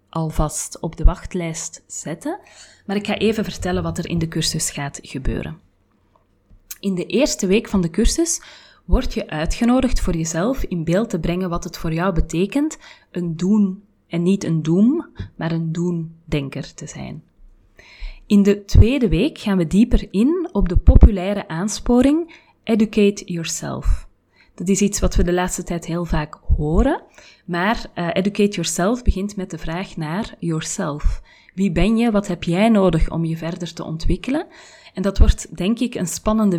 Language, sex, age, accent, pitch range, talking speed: Dutch, female, 30-49, Belgian, 165-210 Hz, 170 wpm